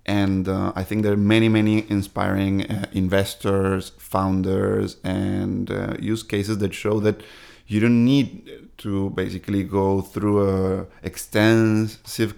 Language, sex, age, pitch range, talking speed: English, male, 30-49, 95-105 Hz, 135 wpm